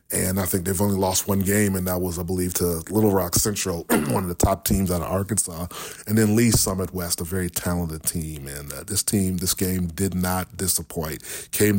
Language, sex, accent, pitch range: English, male, American, 85-100 Hz